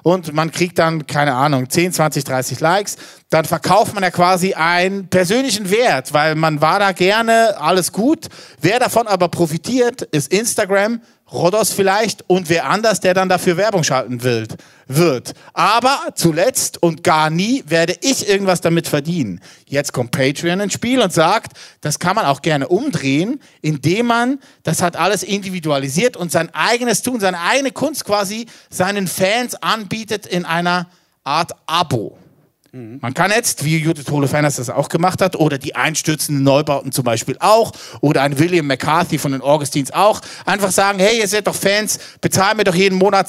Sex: male